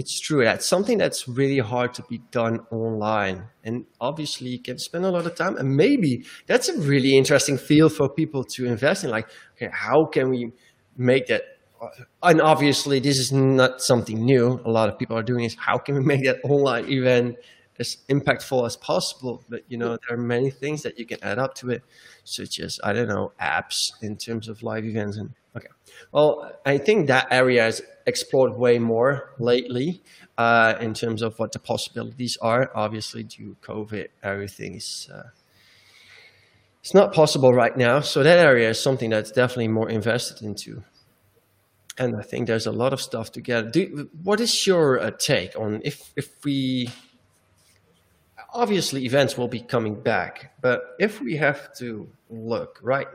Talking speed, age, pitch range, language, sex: 180 wpm, 20-39, 115-140 Hz, English, male